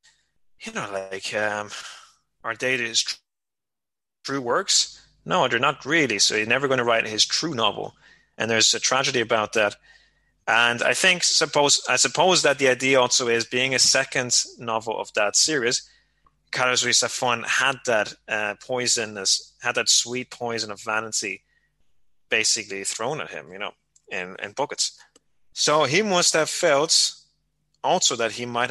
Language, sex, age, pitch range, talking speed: English, male, 20-39, 110-135 Hz, 160 wpm